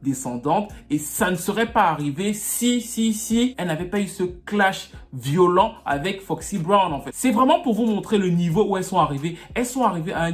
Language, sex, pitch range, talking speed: English, male, 150-205 Hz, 220 wpm